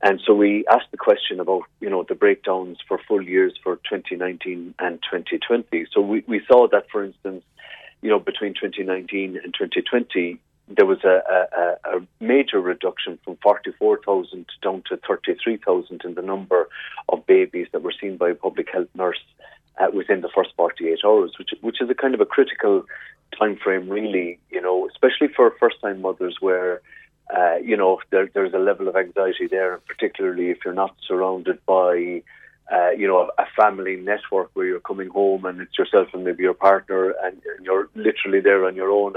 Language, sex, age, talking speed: English, male, 30-49, 185 wpm